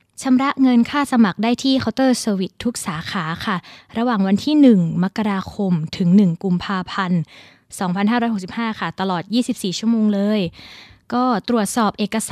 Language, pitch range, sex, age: Thai, 185-235 Hz, female, 20-39